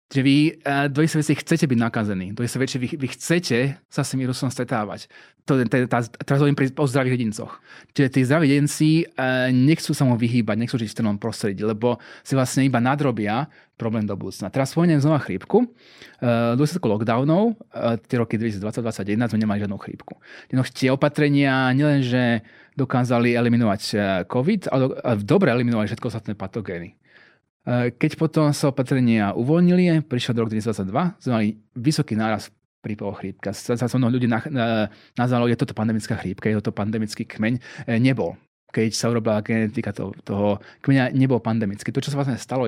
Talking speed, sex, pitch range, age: 160 wpm, male, 115-140 Hz, 30-49